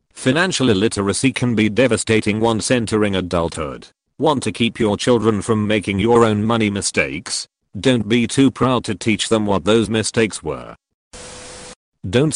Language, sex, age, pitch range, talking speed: English, male, 40-59, 105-120 Hz, 150 wpm